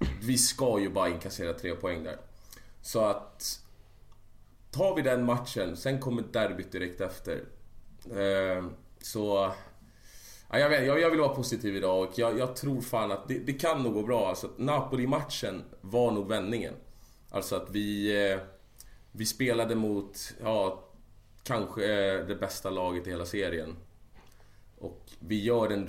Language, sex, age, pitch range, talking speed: Swedish, male, 30-49, 95-115 Hz, 130 wpm